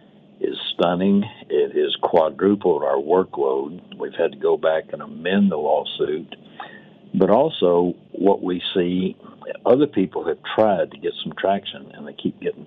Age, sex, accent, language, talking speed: 60-79, male, American, English, 155 wpm